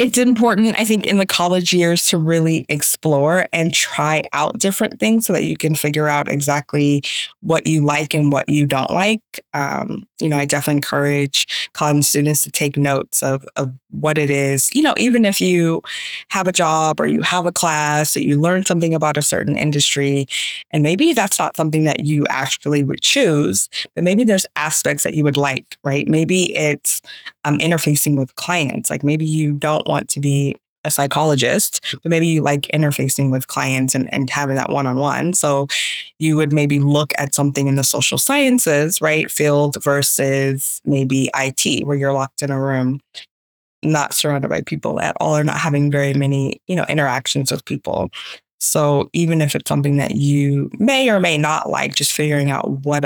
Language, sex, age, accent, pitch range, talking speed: English, female, 20-39, American, 140-165 Hz, 190 wpm